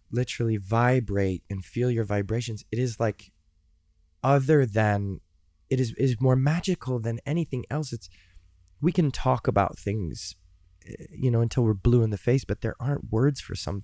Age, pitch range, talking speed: 20-39, 100-125 Hz, 170 wpm